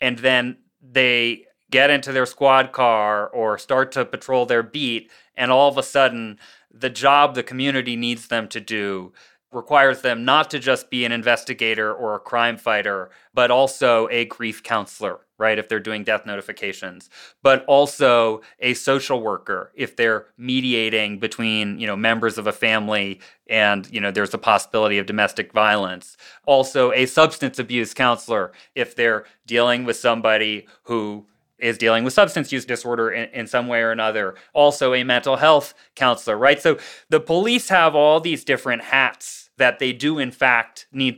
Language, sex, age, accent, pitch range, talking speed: English, male, 30-49, American, 115-145 Hz, 170 wpm